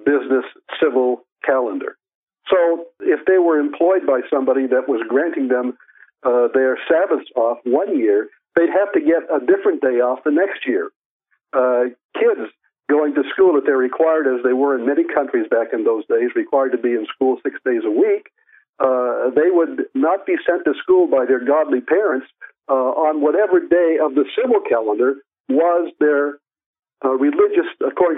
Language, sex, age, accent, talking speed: English, male, 60-79, American, 175 wpm